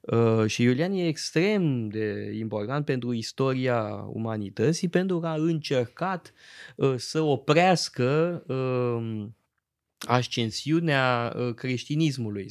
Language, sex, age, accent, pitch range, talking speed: Romanian, male, 20-39, native, 120-145 Hz, 80 wpm